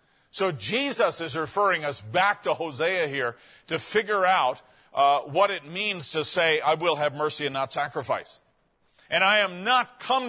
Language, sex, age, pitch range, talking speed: English, male, 50-69, 160-215 Hz, 175 wpm